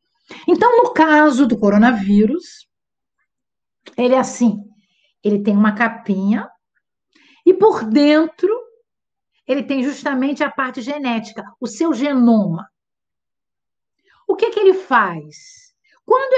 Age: 50-69